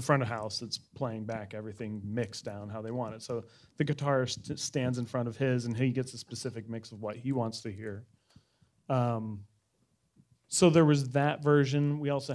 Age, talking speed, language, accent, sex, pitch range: 30-49, 200 wpm, English, American, male, 115-140 Hz